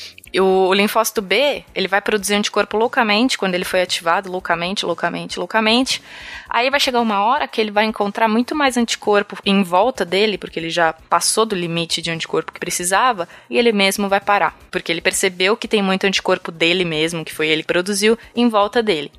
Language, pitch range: Portuguese, 180-210 Hz